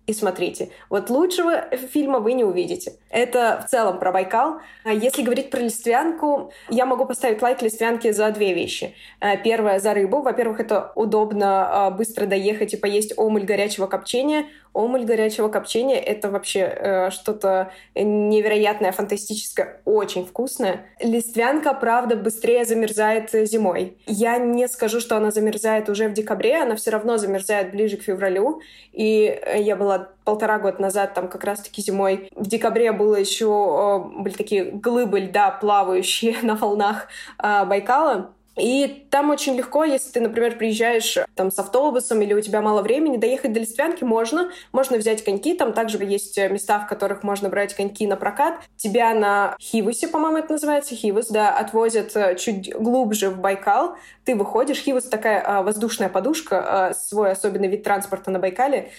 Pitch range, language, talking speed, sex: 200-245 Hz, Russian, 155 wpm, female